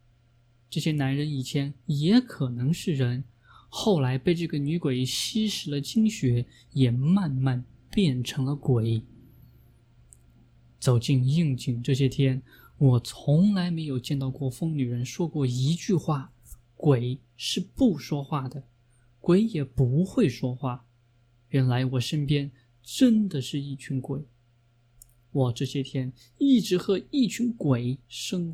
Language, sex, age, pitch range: Chinese, male, 20-39, 120-155 Hz